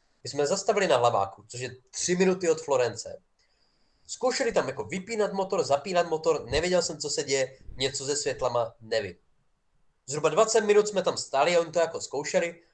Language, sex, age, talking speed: Czech, male, 20-39, 180 wpm